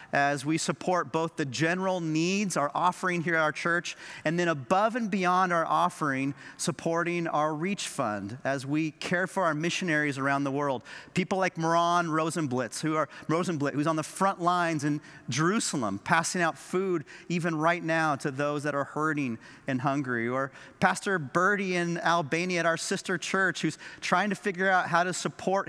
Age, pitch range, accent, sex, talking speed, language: 40-59, 145-175 Hz, American, male, 180 wpm, English